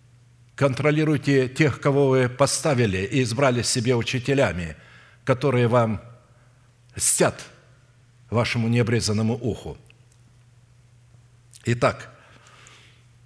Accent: native